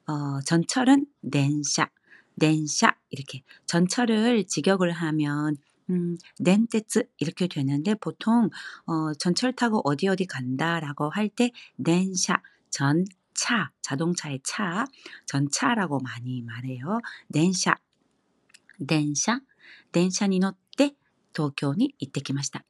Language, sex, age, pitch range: Korean, female, 40-59, 150-215 Hz